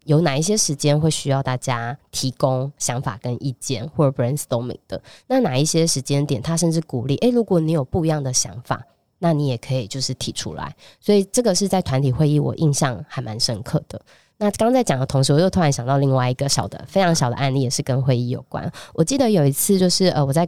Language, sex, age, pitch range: Chinese, female, 20-39, 135-170 Hz